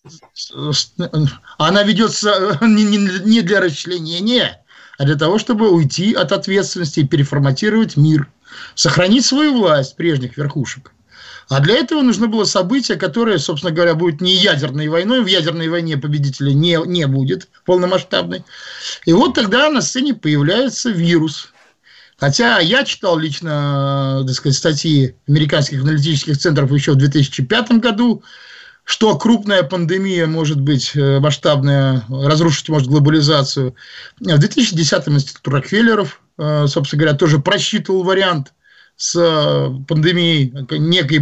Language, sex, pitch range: Russian, male, 145-195 Hz